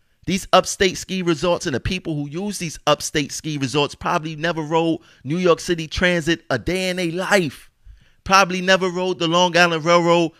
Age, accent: 30-49, American